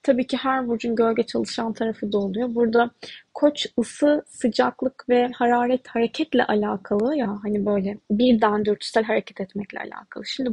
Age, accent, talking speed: 10-29, native, 150 wpm